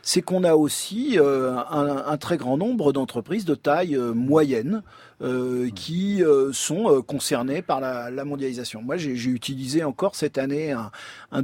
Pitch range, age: 125-165 Hz, 40-59